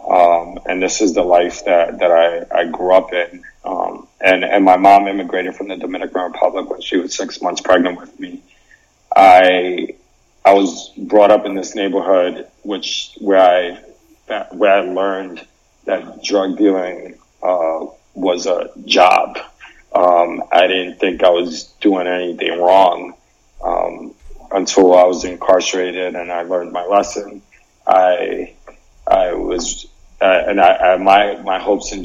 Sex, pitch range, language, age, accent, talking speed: male, 90-95 Hz, English, 30-49, American, 150 wpm